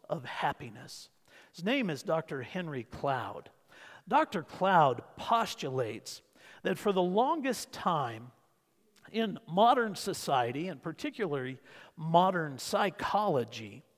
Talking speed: 100 wpm